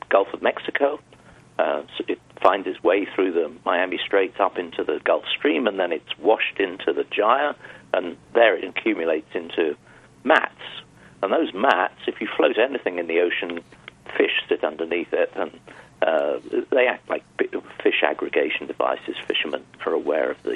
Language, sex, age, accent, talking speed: English, male, 50-69, British, 170 wpm